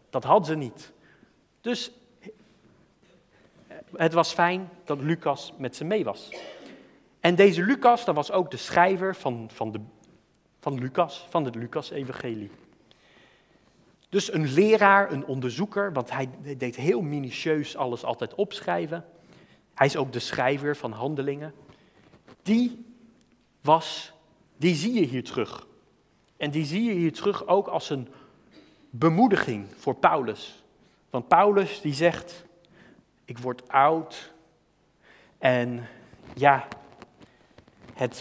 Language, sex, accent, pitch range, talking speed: Dutch, male, Dutch, 130-185 Hz, 125 wpm